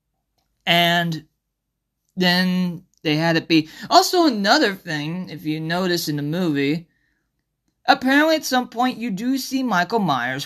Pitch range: 155-255 Hz